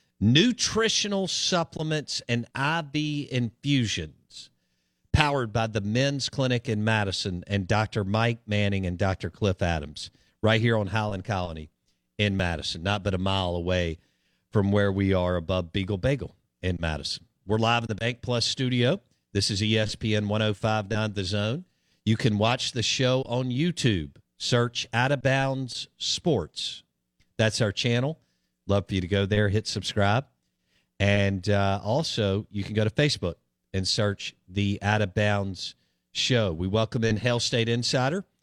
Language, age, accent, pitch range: English, 50-69, American, 100-135 Hz